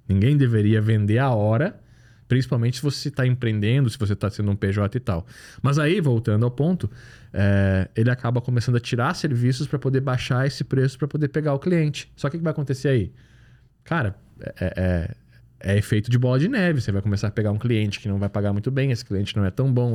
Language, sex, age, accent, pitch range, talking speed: Portuguese, male, 20-39, Brazilian, 110-135 Hz, 220 wpm